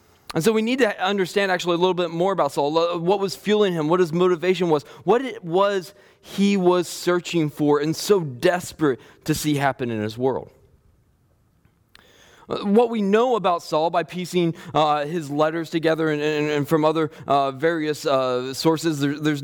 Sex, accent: male, American